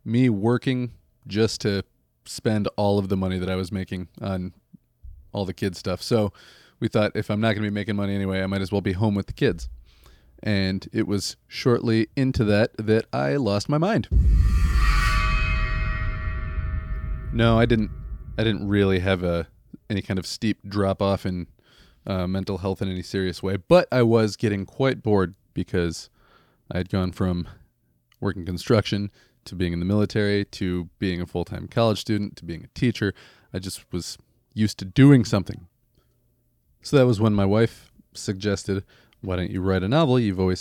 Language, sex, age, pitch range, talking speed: English, male, 30-49, 90-110 Hz, 180 wpm